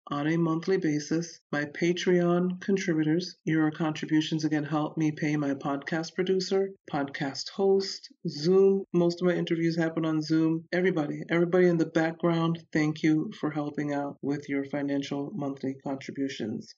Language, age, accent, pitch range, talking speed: English, 40-59, American, 150-180 Hz, 145 wpm